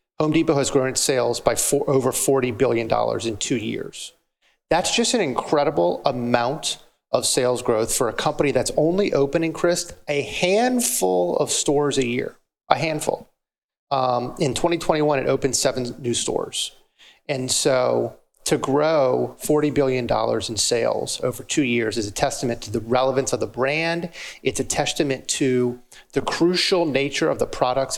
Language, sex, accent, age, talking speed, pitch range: English, male, American, 30-49, 160 wpm, 120-150 Hz